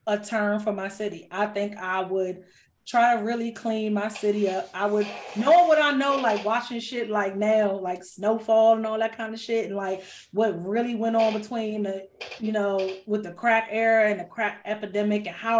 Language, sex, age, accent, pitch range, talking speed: English, female, 20-39, American, 200-225 Hz, 210 wpm